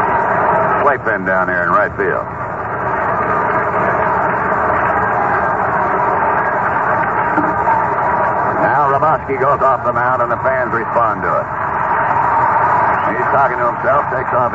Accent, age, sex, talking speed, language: American, 60-79, male, 100 wpm, English